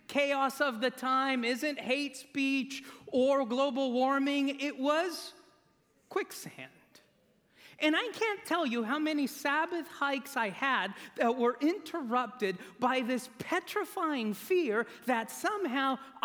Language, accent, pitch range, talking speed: English, American, 170-275 Hz, 120 wpm